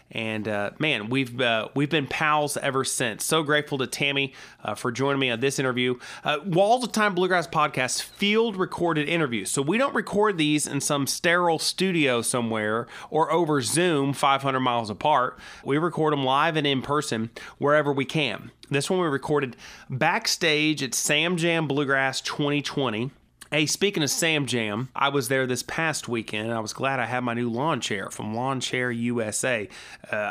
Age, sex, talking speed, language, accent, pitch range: 30-49, male, 180 wpm, English, American, 125-160 Hz